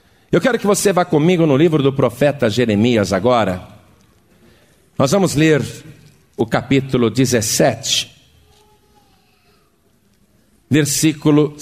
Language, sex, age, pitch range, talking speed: Portuguese, male, 50-69, 120-170 Hz, 100 wpm